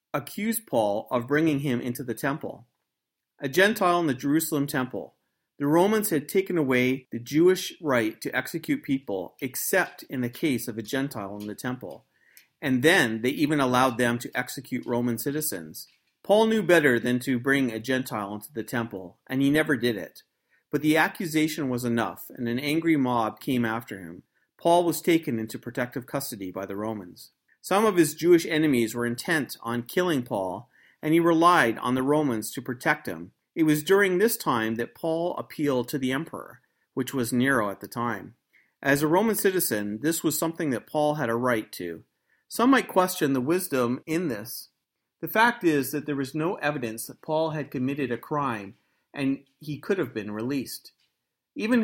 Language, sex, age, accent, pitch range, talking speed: English, male, 40-59, American, 120-160 Hz, 185 wpm